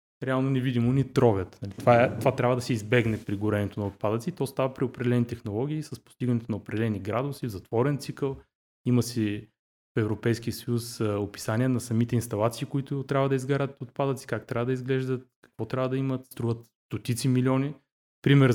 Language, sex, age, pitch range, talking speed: Bulgarian, male, 20-39, 110-130 Hz, 175 wpm